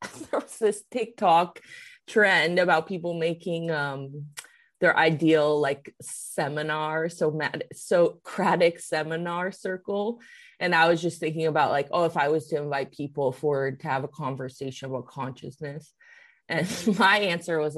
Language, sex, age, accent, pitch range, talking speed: English, female, 20-39, American, 155-210 Hz, 145 wpm